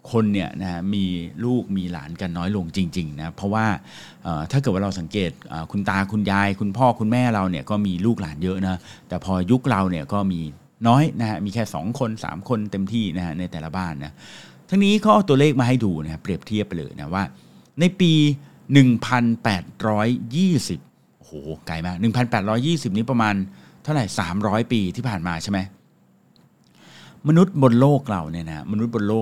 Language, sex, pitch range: English, male, 90-120 Hz